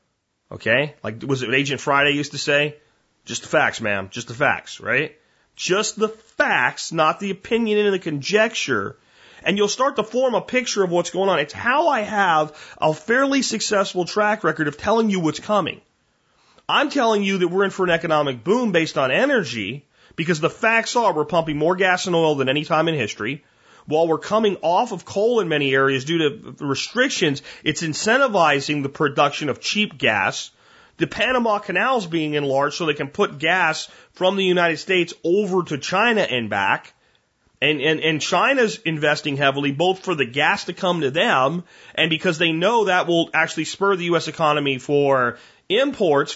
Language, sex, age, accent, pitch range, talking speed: English, male, 30-49, American, 150-205 Hz, 190 wpm